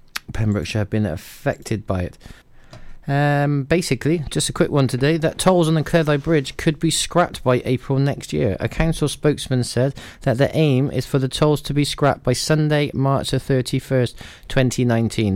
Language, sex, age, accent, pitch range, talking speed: English, male, 30-49, British, 115-145 Hz, 175 wpm